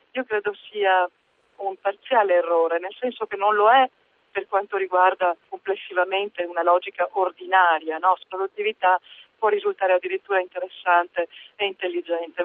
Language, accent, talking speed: Italian, native, 130 wpm